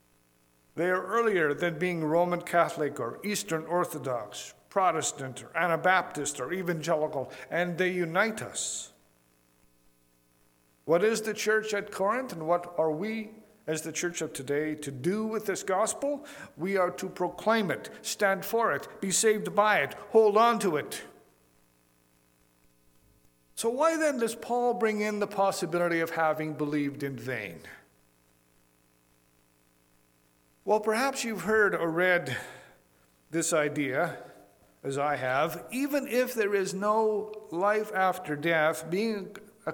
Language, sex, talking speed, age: English, male, 135 wpm, 50-69